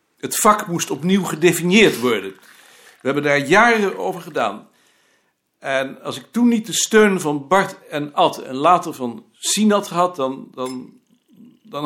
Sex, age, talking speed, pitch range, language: male, 60-79, 150 wpm, 150-210 Hz, Dutch